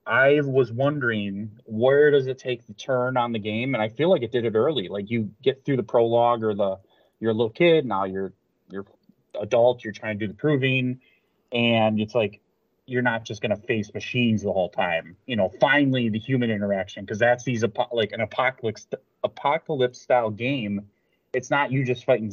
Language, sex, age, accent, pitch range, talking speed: English, male, 30-49, American, 110-135 Hz, 200 wpm